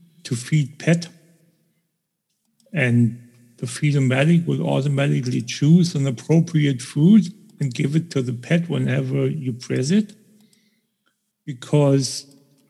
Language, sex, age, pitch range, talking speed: English, male, 60-79, 135-170 Hz, 110 wpm